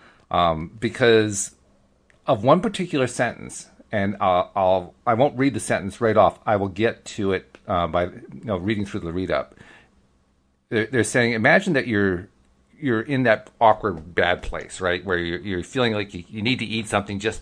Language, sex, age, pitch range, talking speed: English, male, 40-59, 95-120 Hz, 190 wpm